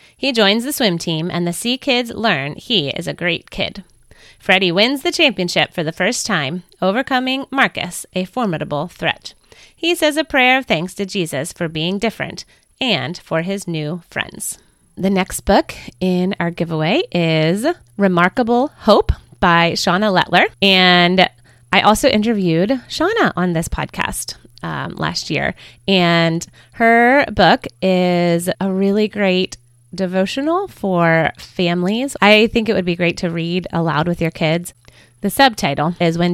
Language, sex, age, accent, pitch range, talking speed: English, female, 30-49, American, 165-225 Hz, 155 wpm